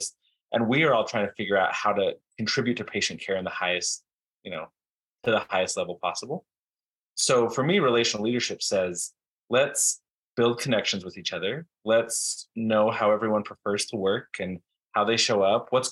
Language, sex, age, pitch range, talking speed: English, male, 20-39, 100-120 Hz, 185 wpm